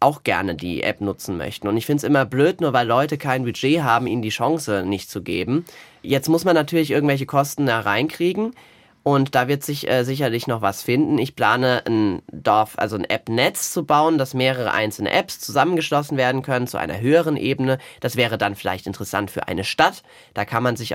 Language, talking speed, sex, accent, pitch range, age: German, 205 wpm, male, German, 115-145 Hz, 30-49